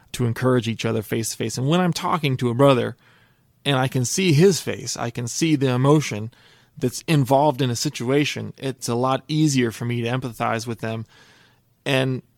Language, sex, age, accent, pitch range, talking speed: English, male, 30-49, American, 115-130 Hz, 200 wpm